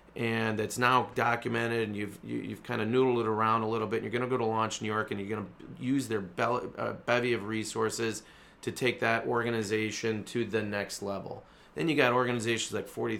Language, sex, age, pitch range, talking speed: English, male, 30-49, 110-125 Hz, 215 wpm